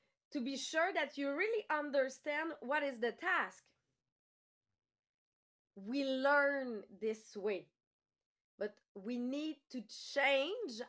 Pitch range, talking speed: 230-305 Hz, 110 wpm